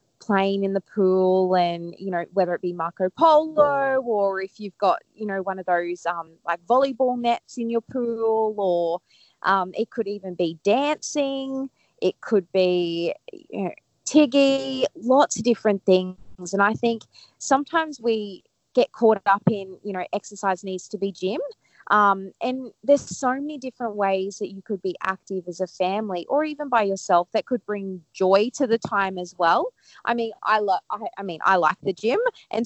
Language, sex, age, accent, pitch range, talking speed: English, female, 20-39, Australian, 185-240 Hz, 185 wpm